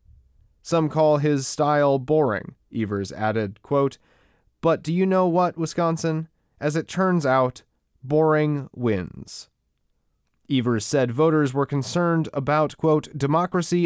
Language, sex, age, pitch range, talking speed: English, male, 30-49, 120-155 Hz, 120 wpm